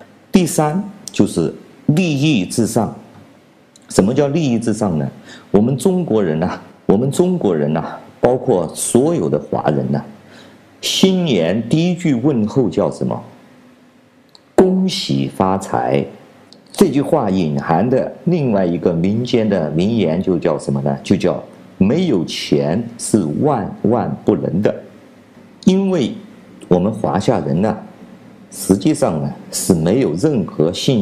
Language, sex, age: Chinese, male, 50-69